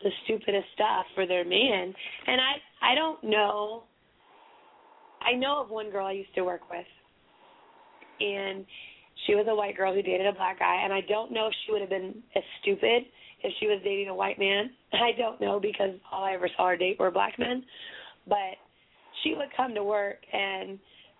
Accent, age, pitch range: American, 30-49, 195-250 Hz